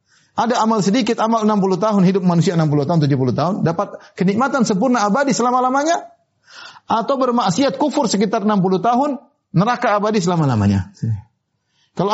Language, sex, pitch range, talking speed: Indonesian, male, 140-210 Hz, 135 wpm